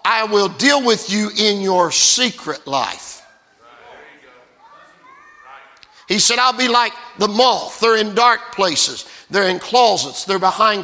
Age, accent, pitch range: 50-69, American, 205-260 Hz